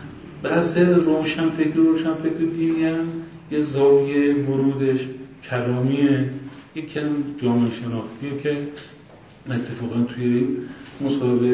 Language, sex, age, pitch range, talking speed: Persian, male, 40-59, 125-145 Hz, 95 wpm